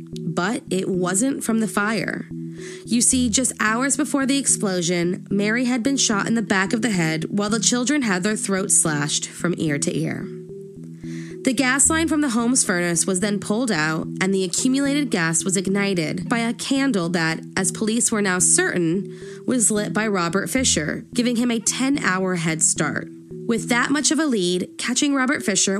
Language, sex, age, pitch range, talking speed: English, female, 20-39, 180-250 Hz, 185 wpm